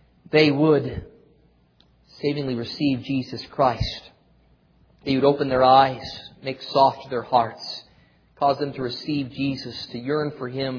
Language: English